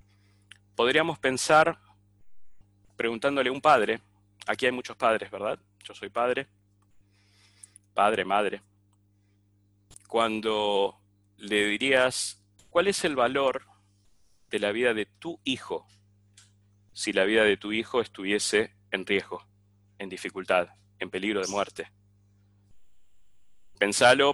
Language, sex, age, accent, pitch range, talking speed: Spanish, male, 30-49, Argentinian, 100-105 Hz, 110 wpm